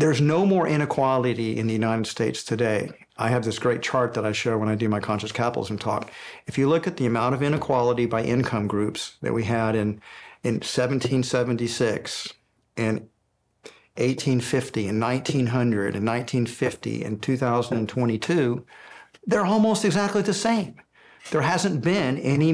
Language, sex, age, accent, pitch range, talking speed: English, male, 50-69, American, 115-145 Hz, 155 wpm